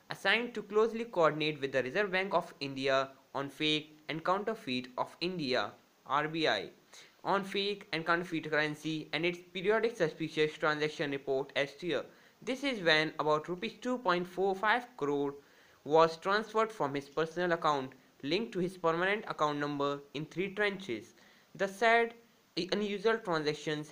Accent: Indian